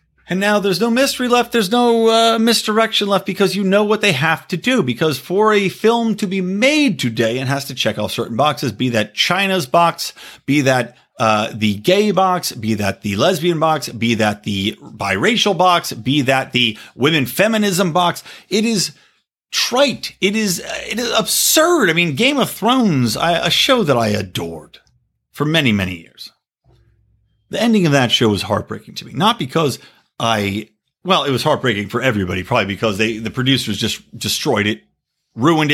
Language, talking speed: English, 185 wpm